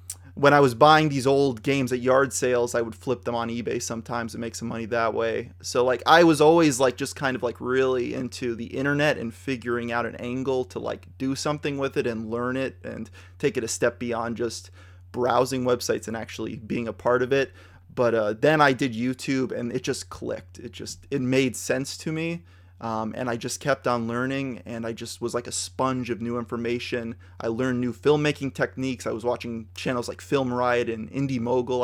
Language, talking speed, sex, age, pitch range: English, 220 wpm, male, 20-39, 115-130 Hz